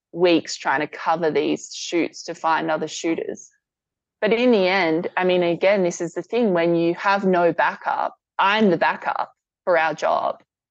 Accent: Australian